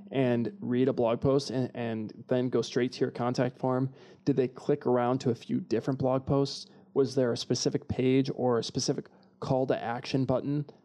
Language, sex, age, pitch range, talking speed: English, male, 20-39, 130-190 Hz, 200 wpm